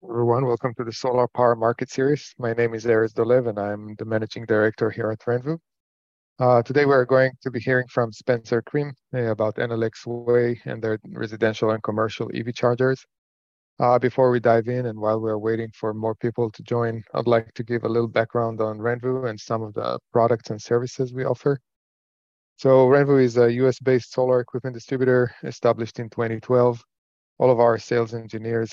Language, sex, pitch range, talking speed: English, male, 115-125 Hz, 190 wpm